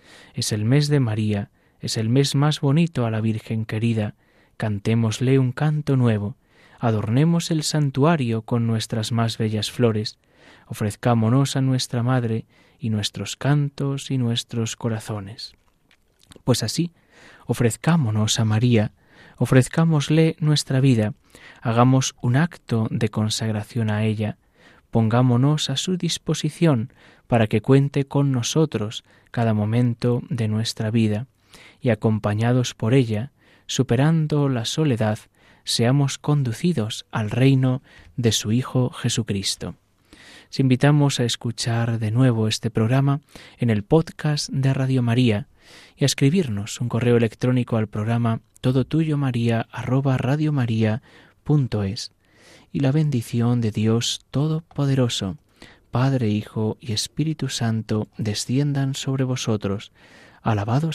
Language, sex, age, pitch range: Spanish, male, 20-39, 110-135 Hz